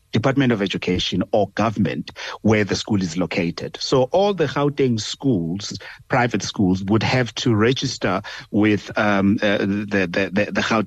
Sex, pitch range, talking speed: male, 100-125 Hz, 150 wpm